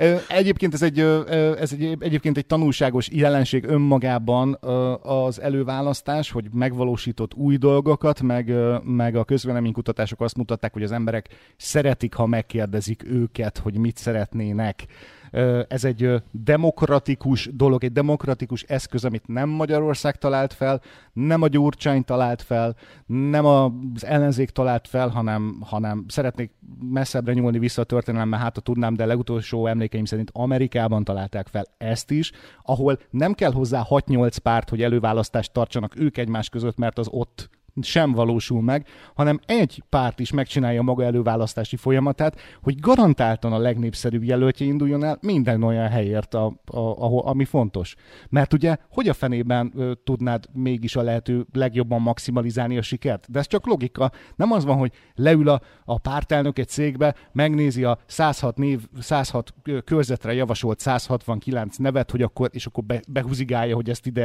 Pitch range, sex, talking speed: 115-140 Hz, male, 150 wpm